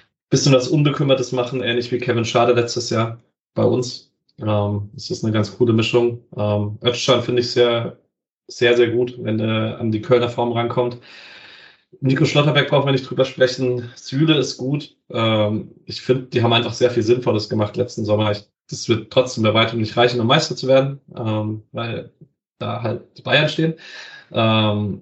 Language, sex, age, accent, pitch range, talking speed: German, male, 20-39, German, 110-125 Hz, 180 wpm